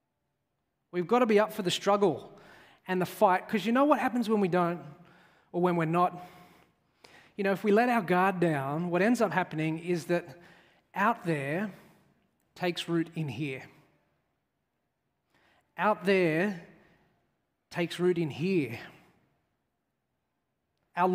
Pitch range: 165-200 Hz